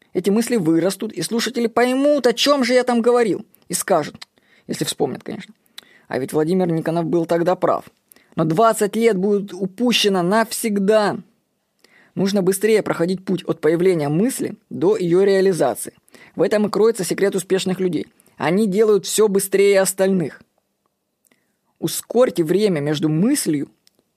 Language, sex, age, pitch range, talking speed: Russian, female, 20-39, 175-225 Hz, 140 wpm